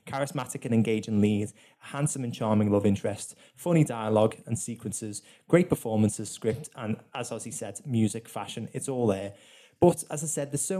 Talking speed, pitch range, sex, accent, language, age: 170 wpm, 115-145 Hz, male, British, English, 20-39